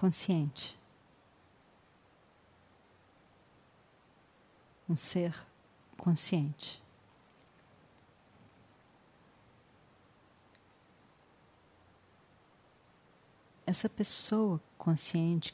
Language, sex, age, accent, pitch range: Portuguese, female, 50-69, Brazilian, 150-185 Hz